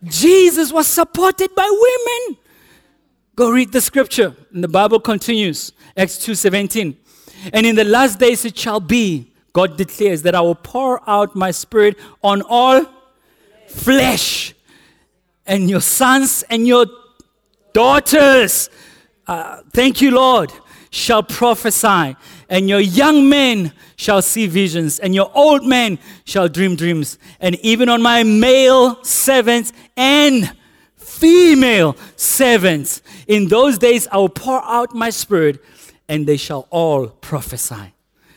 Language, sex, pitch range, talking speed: English, male, 165-245 Hz, 130 wpm